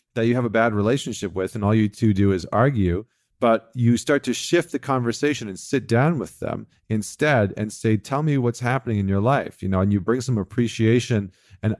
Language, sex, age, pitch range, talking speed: English, male, 40-59, 105-130 Hz, 225 wpm